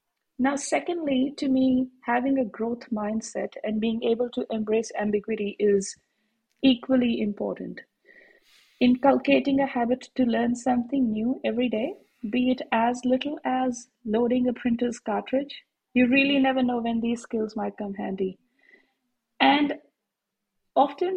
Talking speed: 135 wpm